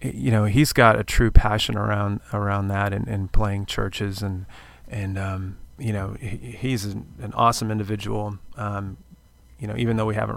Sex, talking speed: male, 185 wpm